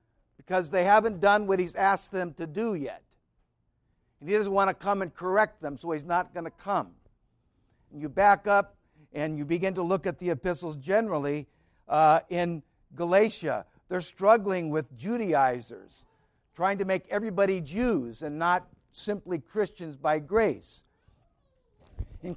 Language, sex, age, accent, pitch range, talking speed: English, male, 60-79, American, 165-215 Hz, 155 wpm